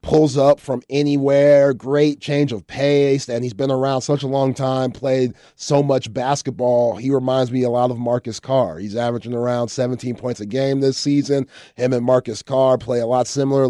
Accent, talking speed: American, 195 wpm